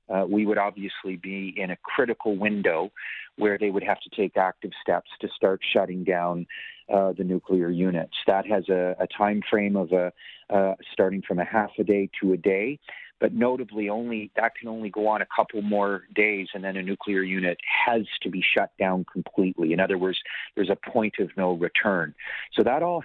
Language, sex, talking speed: English, male, 205 wpm